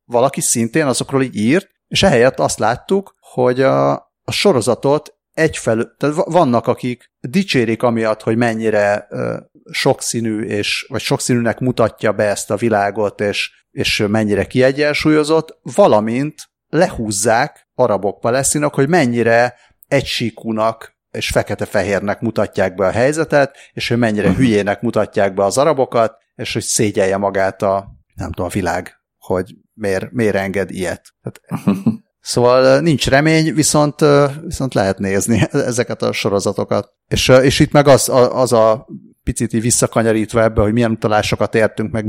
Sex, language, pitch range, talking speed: male, Hungarian, 105-140 Hz, 135 wpm